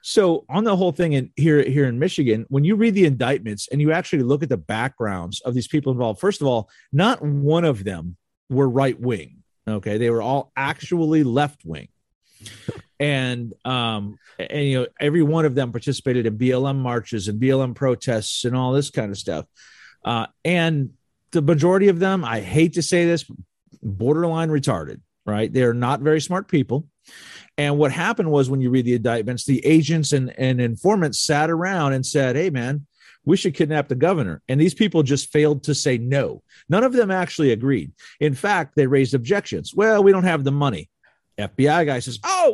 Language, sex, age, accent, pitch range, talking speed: English, male, 40-59, American, 125-175 Hz, 190 wpm